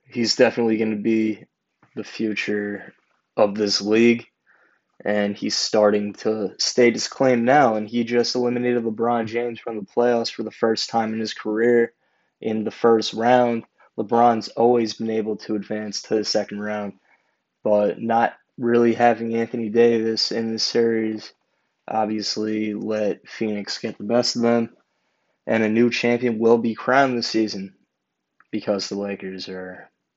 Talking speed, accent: 155 wpm, American